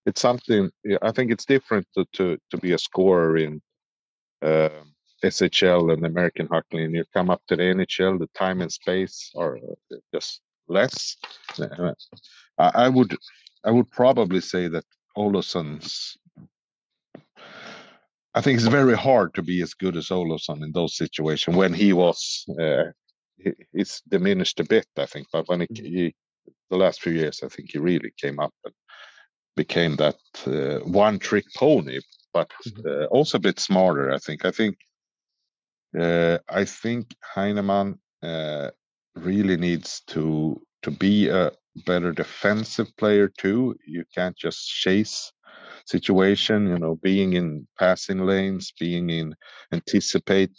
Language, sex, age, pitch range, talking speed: English, male, 50-69, 80-100 Hz, 145 wpm